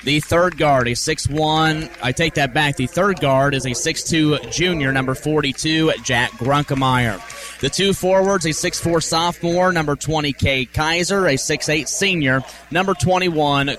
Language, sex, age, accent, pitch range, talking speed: English, male, 30-49, American, 135-160 Hz, 150 wpm